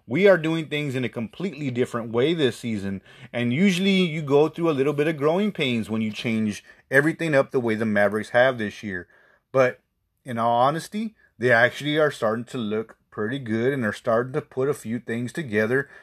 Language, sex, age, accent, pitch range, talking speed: English, male, 30-49, American, 120-165 Hz, 205 wpm